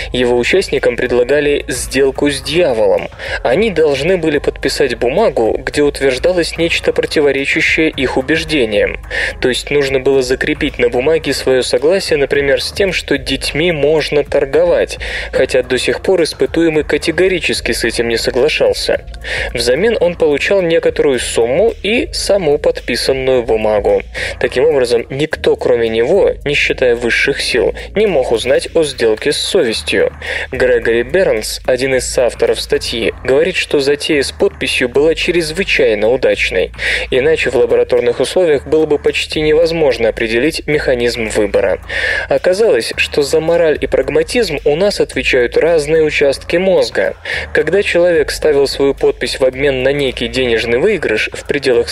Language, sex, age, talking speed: Russian, male, 20-39, 135 wpm